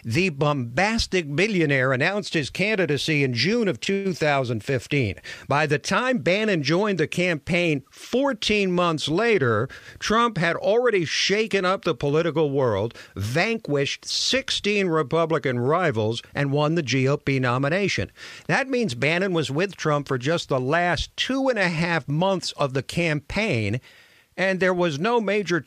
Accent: American